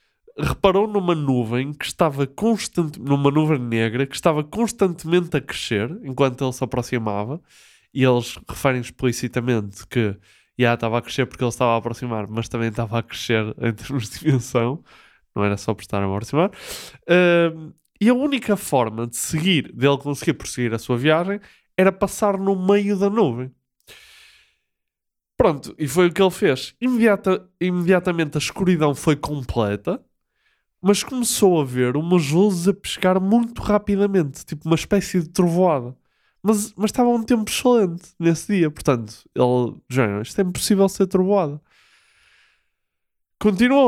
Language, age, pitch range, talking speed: Portuguese, 20-39, 120-190 Hz, 155 wpm